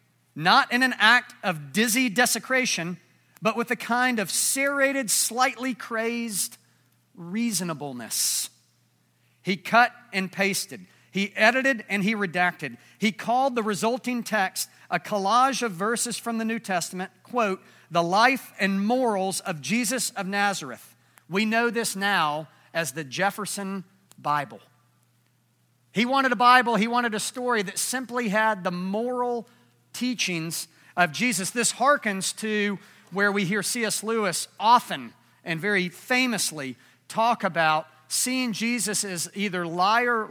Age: 40-59